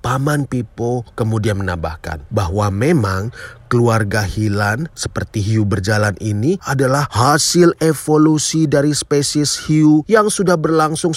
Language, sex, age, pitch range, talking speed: Indonesian, male, 30-49, 115-165 Hz, 115 wpm